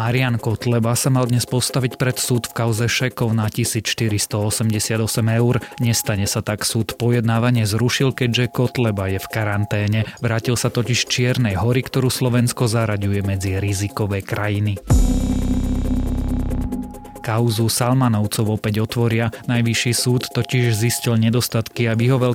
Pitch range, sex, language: 105-125 Hz, male, Slovak